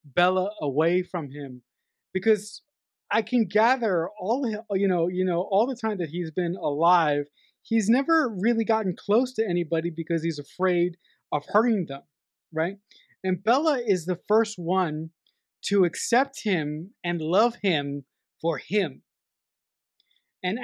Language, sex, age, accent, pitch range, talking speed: English, male, 30-49, American, 170-220 Hz, 140 wpm